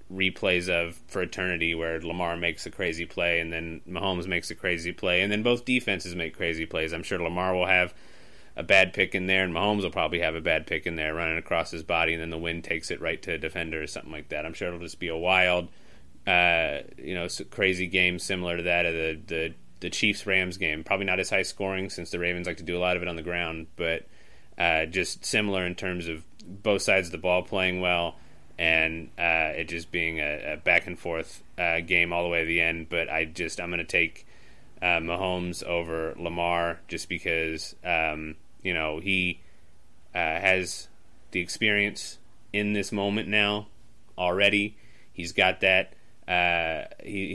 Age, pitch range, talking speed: 30-49, 80-95 Hz, 205 wpm